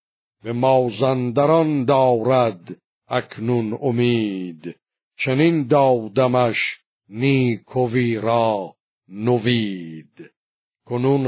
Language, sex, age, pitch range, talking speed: Persian, male, 60-79, 120-135 Hz, 60 wpm